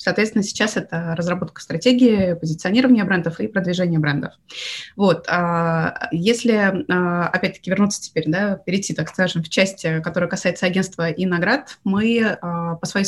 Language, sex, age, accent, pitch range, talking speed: Russian, female, 20-39, native, 170-205 Hz, 135 wpm